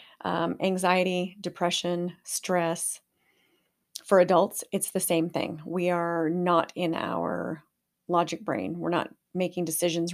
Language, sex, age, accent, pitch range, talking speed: English, female, 30-49, American, 165-200 Hz, 125 wpm